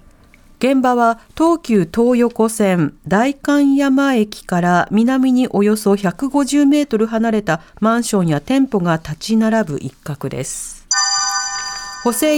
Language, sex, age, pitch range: Japanese, female, 40-59, 175-270 Hz